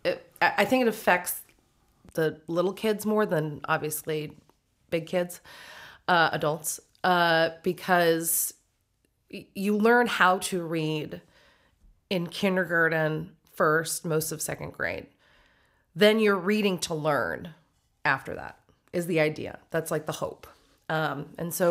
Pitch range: 160-195 Hz